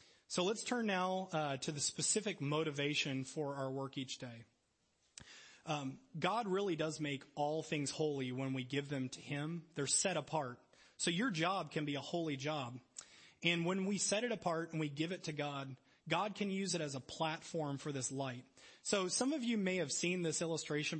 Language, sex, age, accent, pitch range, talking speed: English, male, 30-49, American, 140-175 Hz, 200 wpm